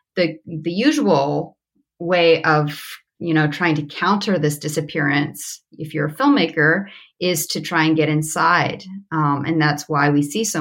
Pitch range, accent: 145-170 Hz, American